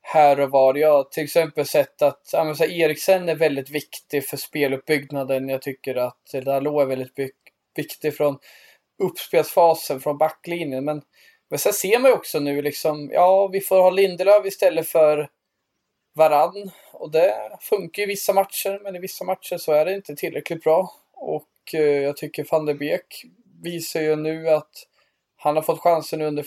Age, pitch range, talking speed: 20-39, 145-170 Hz, 170 wpm